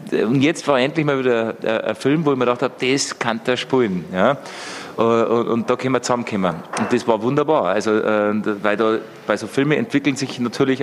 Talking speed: 195 wpm